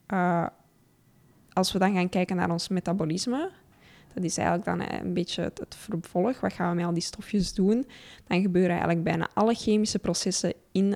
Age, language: 10-29, Dutch